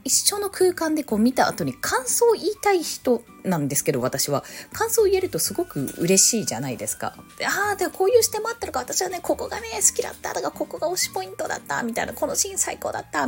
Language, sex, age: Japanese, female, 20-39